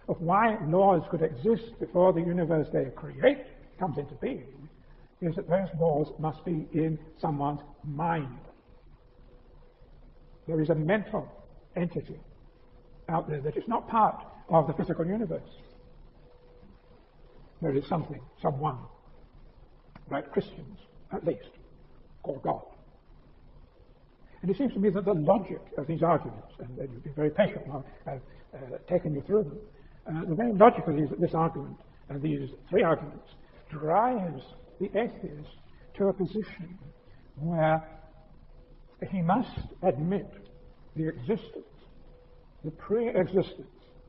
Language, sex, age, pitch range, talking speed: English, male, 60-79, 150-190 Hz, 130 wpm